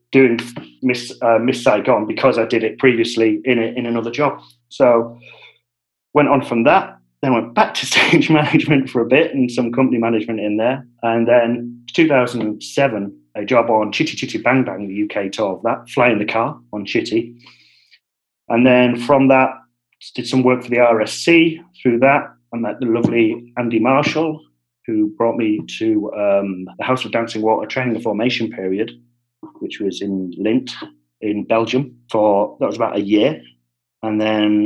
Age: 40-59